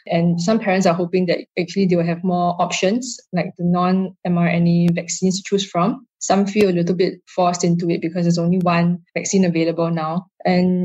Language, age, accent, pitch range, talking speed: English, 10-29, Malaysian, 170-195 Hz, 195 wpm